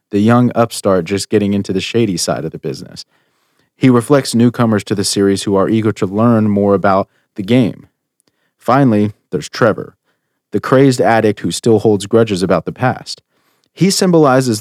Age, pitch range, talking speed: 30-49, 95-115 Hz, 175 wpm